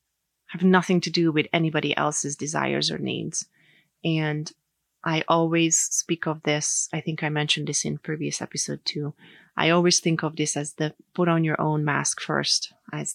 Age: 30-49